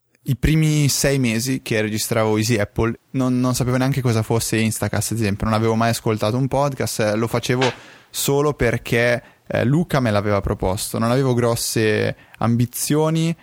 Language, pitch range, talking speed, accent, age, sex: Italian, 115-135 Hz, 160 wpm, native, 20-39, male